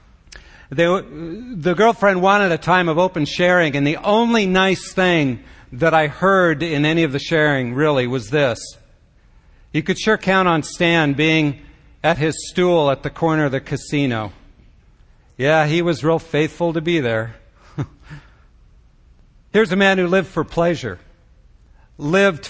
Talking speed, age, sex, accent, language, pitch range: 150 wpm, 50-69, male, American, English, 145-175 Hz